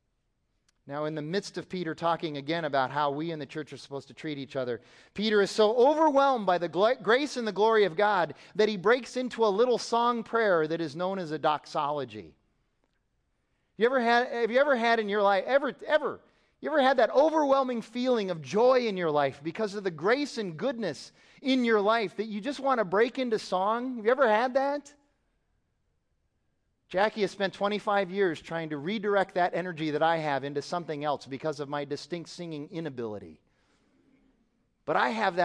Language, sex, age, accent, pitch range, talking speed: English, male, 30-49, American, 170-235 Hz, 195 wpm